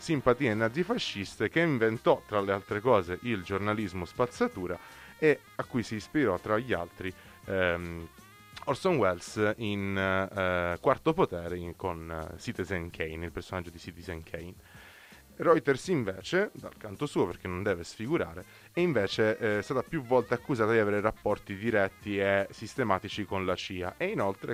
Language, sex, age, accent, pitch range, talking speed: Italian, male, 20-39, native, 90-110 Hz, 150 wpm